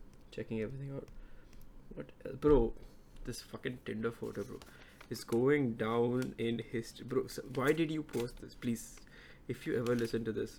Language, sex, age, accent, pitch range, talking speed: English, male, 20-39, Indian, 110-125 Hz, 165 wpm